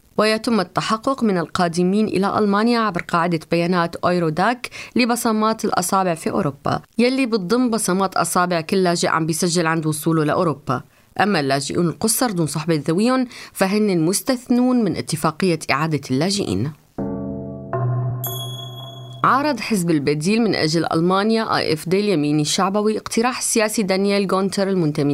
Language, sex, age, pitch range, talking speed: Arabic, female, 20-39, 160-220 Hz, 125 wpm